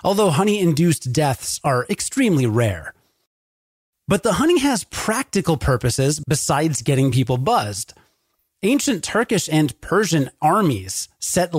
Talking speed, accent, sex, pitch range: 115 wpm, American, male, 130-185 Hz